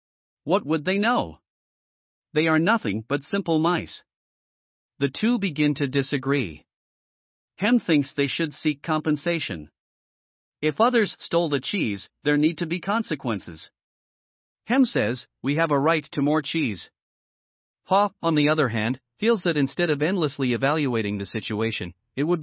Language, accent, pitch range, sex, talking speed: German, American, 130-175 Hz, male, 145 wpm